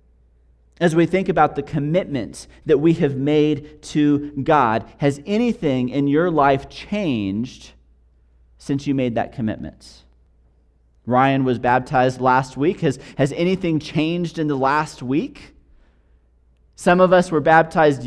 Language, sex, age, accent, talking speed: English, male, 30-49, American, 135 wpm